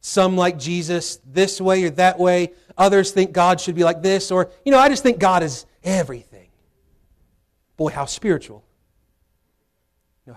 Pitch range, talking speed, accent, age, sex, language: 115-180 Hz, 170 wpm, American, 40-59, male, English